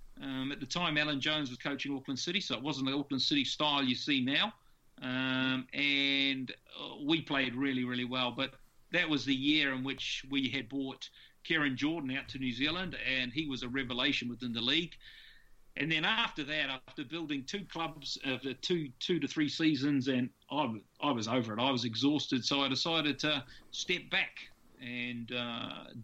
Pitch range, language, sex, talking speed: 130-150 Hz, English, male, 190 wpm